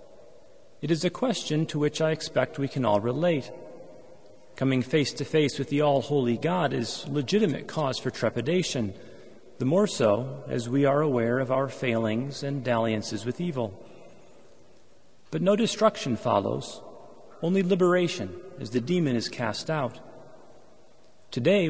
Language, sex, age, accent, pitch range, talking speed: English, male, 40-59, American, 120-165 Hz, 145 wpm